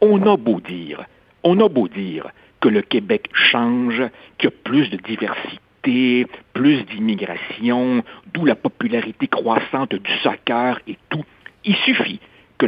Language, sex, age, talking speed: French, male, 60-79, 145 wpm